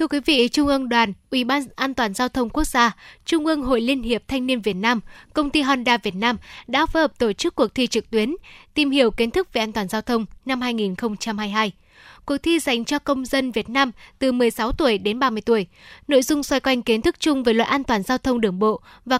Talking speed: 245 wpm